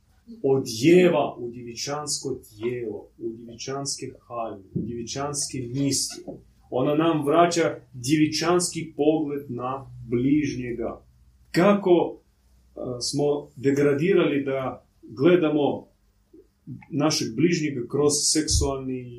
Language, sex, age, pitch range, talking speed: Croatian, male, 30-49, 115-160 Hz, 80 wpm